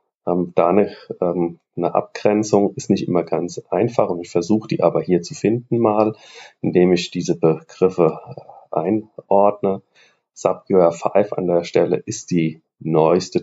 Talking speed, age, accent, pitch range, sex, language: 140 wpm, 40-59, German, 90-115 Hz, male, German